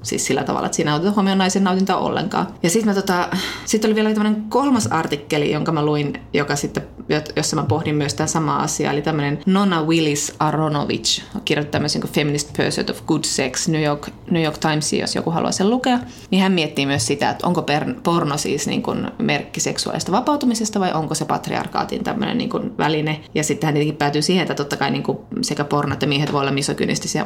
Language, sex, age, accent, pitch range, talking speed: Finnish, female, 20-39, native, 145-185 Hz, 195 wpm